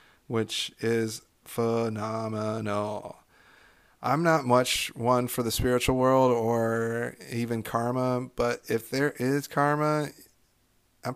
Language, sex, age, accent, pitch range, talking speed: English, male, 30-49, American, 115-140 Hz, 110 wpm